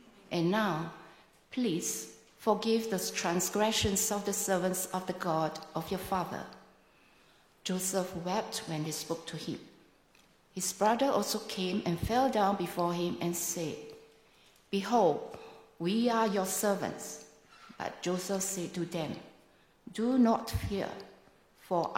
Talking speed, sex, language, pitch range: 130 wpm, female, English, 170-215 Hz